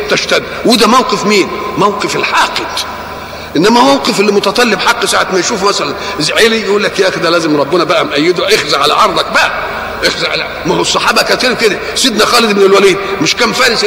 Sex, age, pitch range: male, 50-69, 185-255 Hz